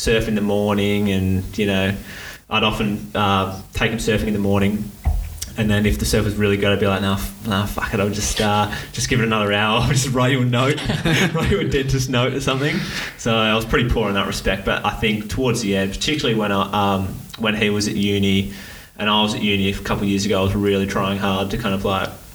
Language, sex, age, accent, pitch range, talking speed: English, male, 20-39, Australian, 95-110 Hz, 255 wpm